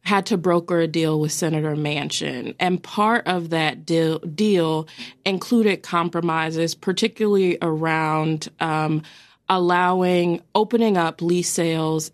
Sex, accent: female, American